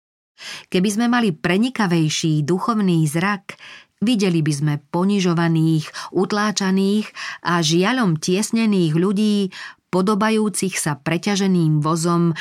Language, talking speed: Slovak, 90 wpm